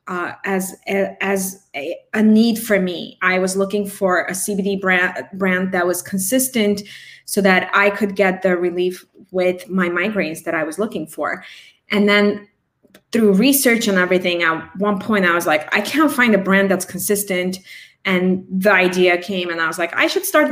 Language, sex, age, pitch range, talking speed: English, female, 20-39, 185-215 Hz, 190 wpm